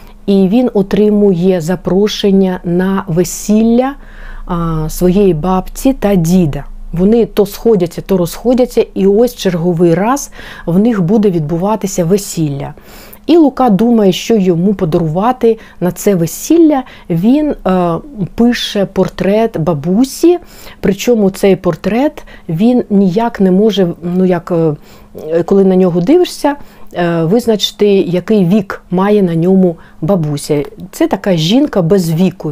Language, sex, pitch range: Ukrainian, female, 175-215 Hz